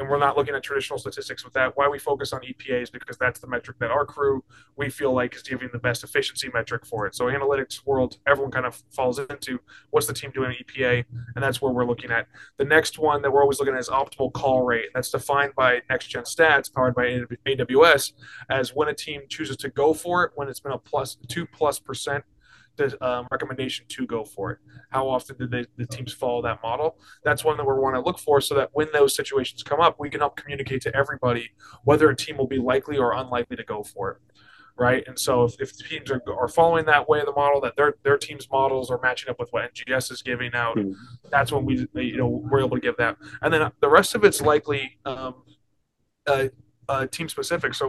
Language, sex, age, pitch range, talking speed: English, male, 20-39, 125-145 Hz, 240 wpm